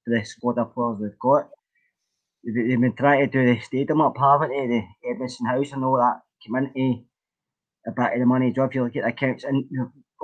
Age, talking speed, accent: 20-39, 195 wpm, British